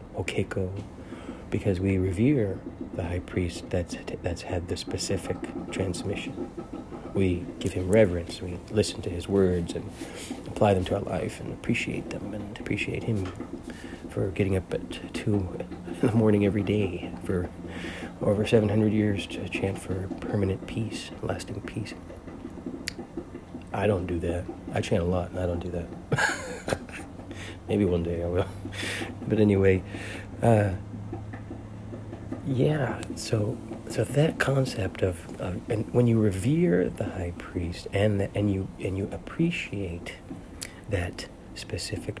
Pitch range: 90-105 Hz